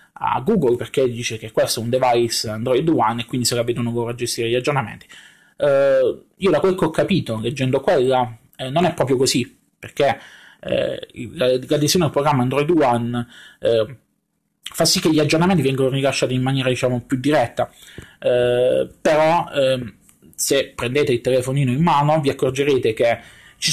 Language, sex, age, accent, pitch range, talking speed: Italian, male, 20-39, native, 120-140 Hz, 170 wpm